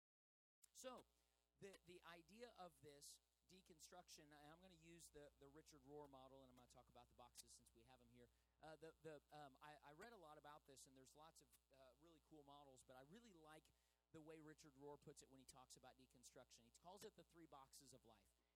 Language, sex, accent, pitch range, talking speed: English, male, American, 130-180 Hz, 235 wpm